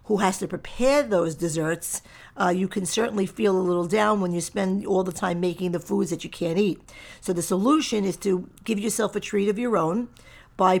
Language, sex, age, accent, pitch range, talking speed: English, female, 50-69, American, 180-220 Hz, 220 wpm